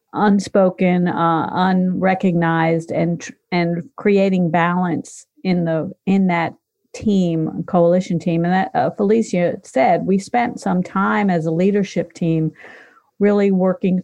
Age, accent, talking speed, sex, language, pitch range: 50-69, American, 125 wpm, female, English, 160-190 Hz